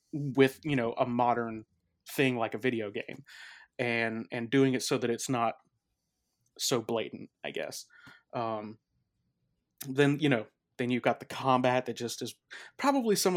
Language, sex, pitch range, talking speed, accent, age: English, male, 120-135 Hz, 160 wpm, American, 30-49